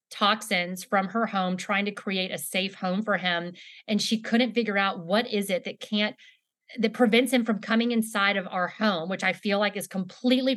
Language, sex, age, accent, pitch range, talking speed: English, female, 30-49, American, 185-225 Hz, 210 wpm